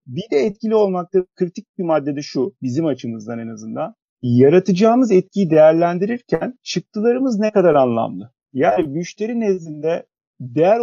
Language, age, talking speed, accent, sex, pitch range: Turkish, 40-59, 125 wpm, native, male, 140-190 Hz